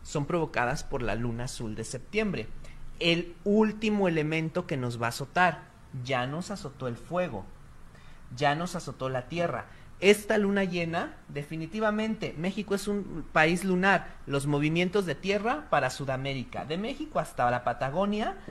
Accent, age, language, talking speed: Mexican, 40-59, Spanish, 150 wpm